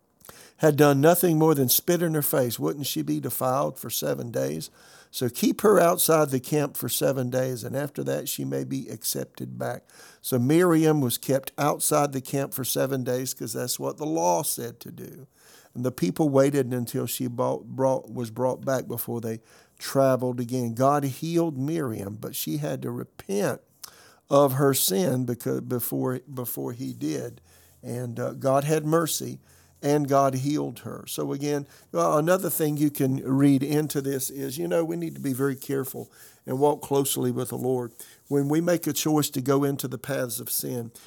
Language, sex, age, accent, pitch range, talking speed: English, male, 50-69, American, 125-150 Hz, 185 wpm